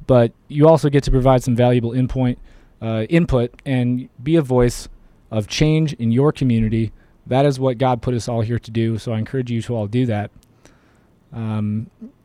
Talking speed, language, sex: 180 wpm, English, male